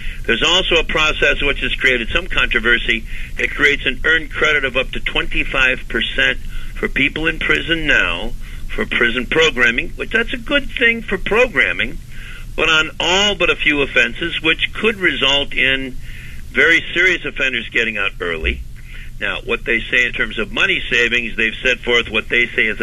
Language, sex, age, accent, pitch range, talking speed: English, male, 60-79, American, 120-175 Hz, 175 wpm